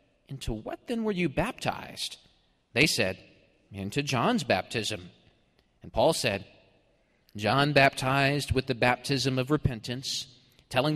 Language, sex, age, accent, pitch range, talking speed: English, male, 30-49, American, 110-135 Hz, 120 wpm